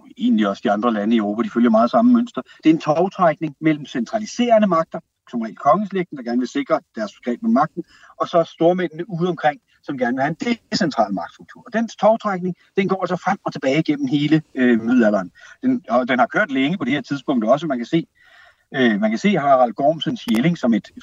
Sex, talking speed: male, 235 wpm